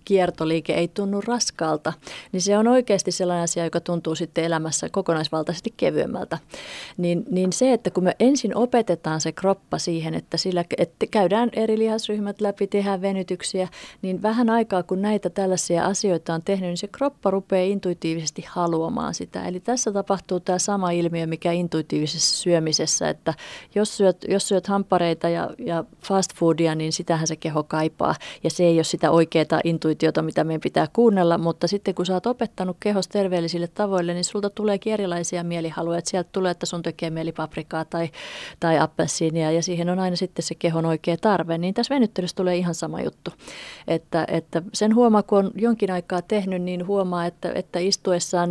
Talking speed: 175 wpm